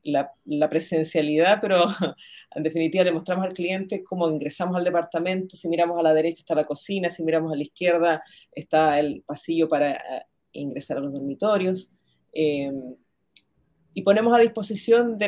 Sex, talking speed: female, 160 wpm